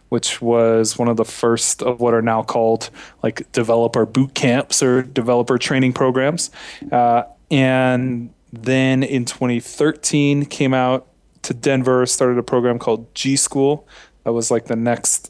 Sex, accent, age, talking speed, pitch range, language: male, American, 20-39, 150 wpm, 115-135 Hz, English